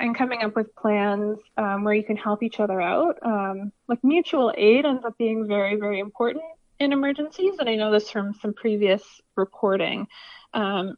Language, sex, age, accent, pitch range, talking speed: English, female, 20-39, American, 205-250 Hz, 185 wpm